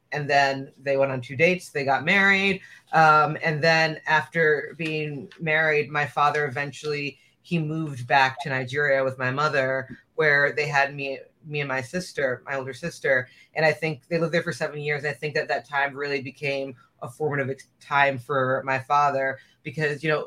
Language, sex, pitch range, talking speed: English, female, 135-155 Hz, 185 wpm